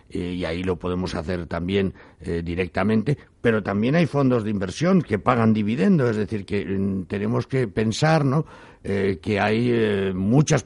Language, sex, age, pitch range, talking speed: Spanish, male, 60-79, 90-110 Hz, 165 wpm